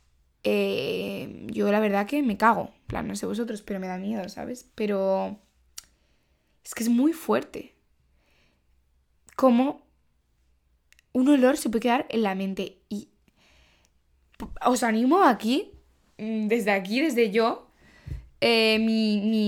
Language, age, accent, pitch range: Spanish, 10-29, Spanish, 190-235 Hz